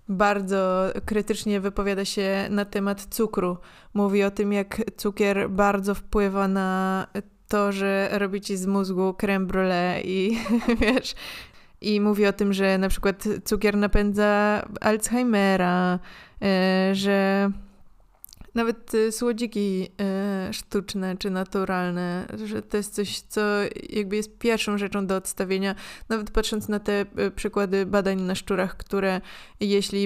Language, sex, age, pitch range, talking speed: Polish, female, 20-39, 195-215 Hz, 130 wpm